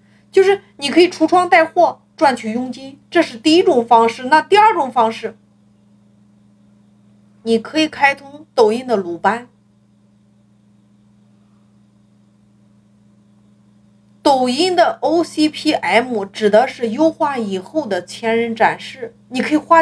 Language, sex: Chinese, female